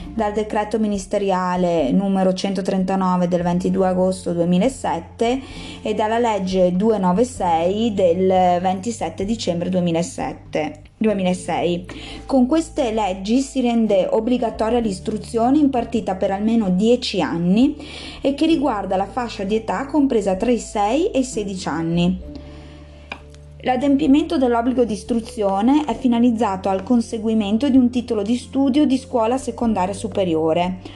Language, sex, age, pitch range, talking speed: Italian, female, 20-39, 180-245 Hz, 120 wpm